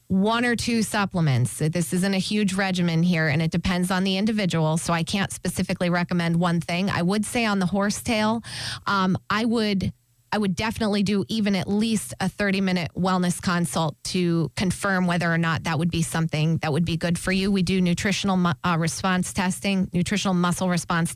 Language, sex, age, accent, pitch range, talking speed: English, female, 20-39, American, 175-205 Hz, 185 wpm